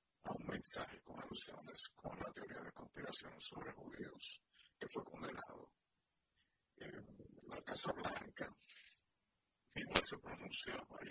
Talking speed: 125 wpm